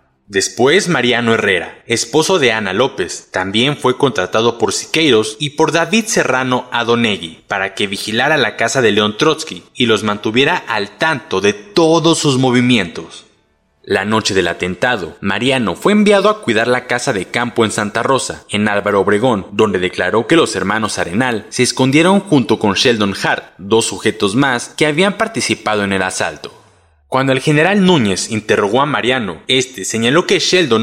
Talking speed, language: 165 wpm, Spanish